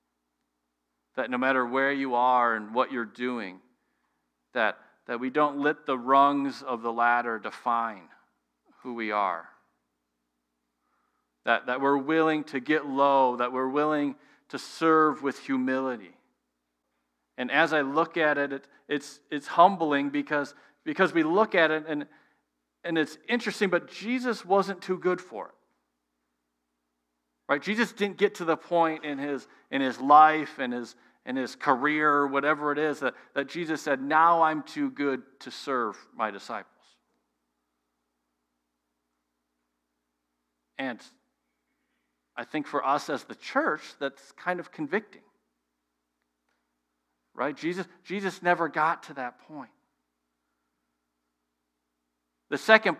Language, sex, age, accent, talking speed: English, male, 40-59, American, 135 wpm